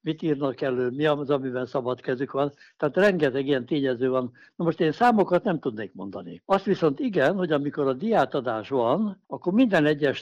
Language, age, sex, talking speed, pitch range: Hungarian, 60-79, male, 190 wpm, 135-180 Hz